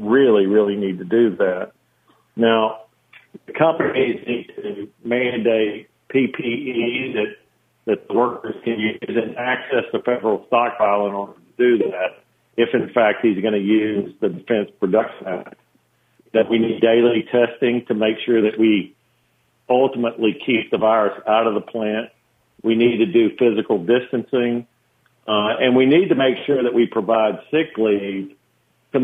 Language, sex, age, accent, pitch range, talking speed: English, male, 50-69, American, 105-120 Hz, 155 wpm